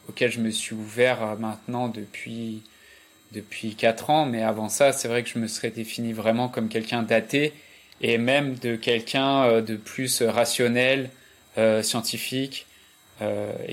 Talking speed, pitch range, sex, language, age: 150 wpm, 110-135 Hz, male, French, 20-39